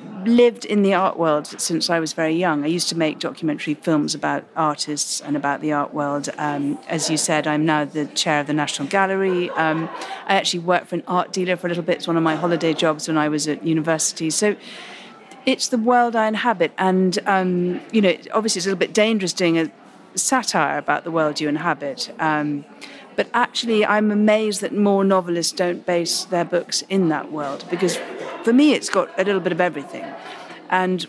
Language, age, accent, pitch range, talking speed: English, 40-59, British, 155-200 Hz, 210 wpm